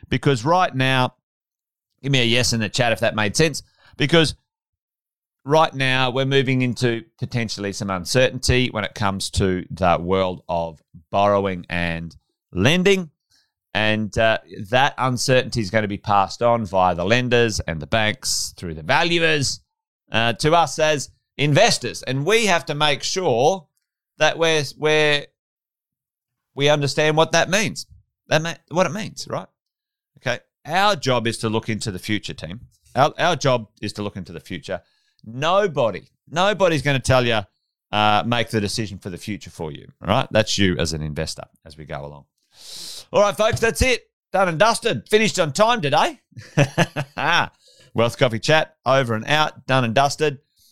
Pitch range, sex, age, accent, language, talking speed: 110-155 Hz, male, 30-49, Australian, English, 170 wpm